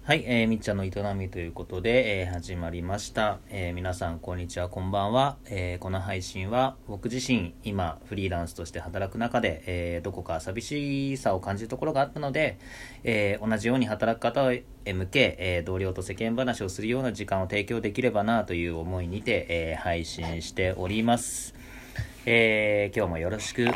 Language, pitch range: Japanese, 90-125 Hz